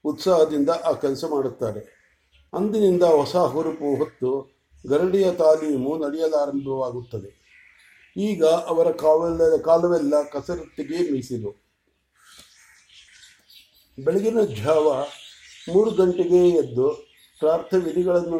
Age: 50-69